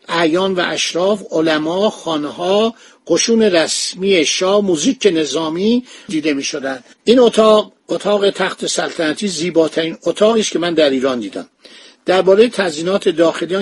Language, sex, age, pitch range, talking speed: Persian, male, 60-79, 160-205 Hz, 130 wpm